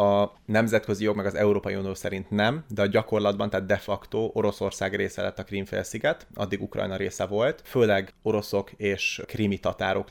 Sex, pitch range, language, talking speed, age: male, 100-110 Hz, Hungarian, 170 wpm, 30-49